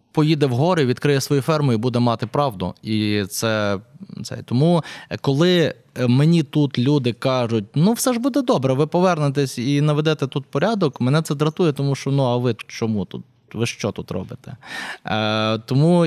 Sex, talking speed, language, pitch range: male, 170 wpm, Ukrainian, 115-145 Hz